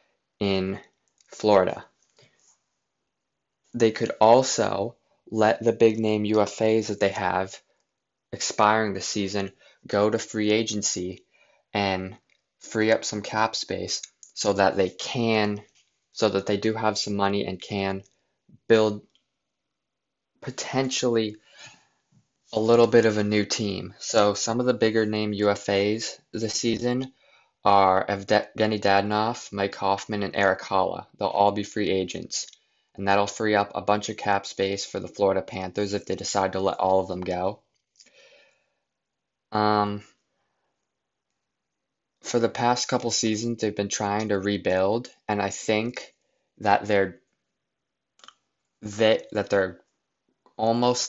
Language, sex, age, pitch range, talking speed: English, male, 20-39, 100-110 Hz, 130 wpm